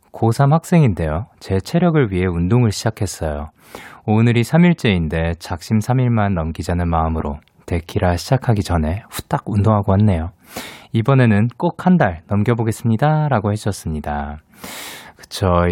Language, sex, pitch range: Korean, male, 90-125 Hz